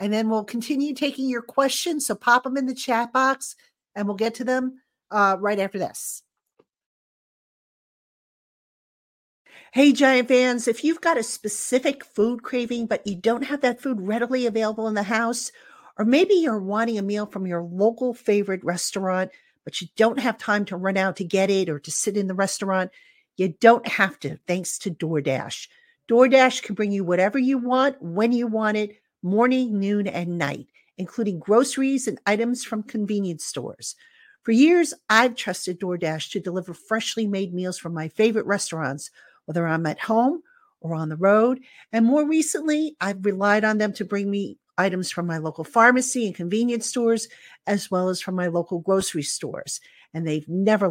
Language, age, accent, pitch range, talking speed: English, 50-69, American, 185-250 Hz, 180 wpm